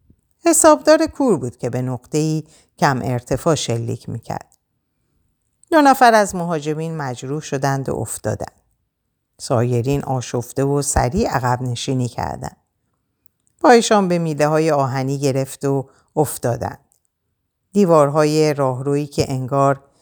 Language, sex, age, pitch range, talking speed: Persian, female, 50-69, 125-165 Hz, 105 wpm